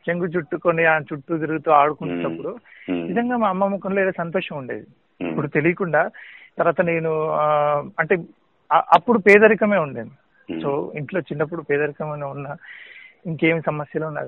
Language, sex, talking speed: Telugu, male, 120 wpm